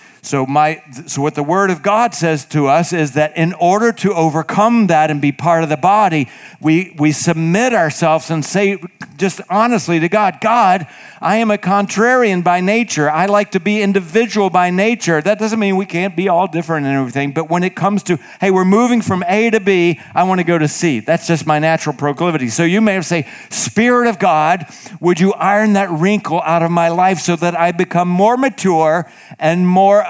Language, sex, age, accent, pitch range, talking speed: English, male, 50-69, American, 140-185 Hz, 210 wpm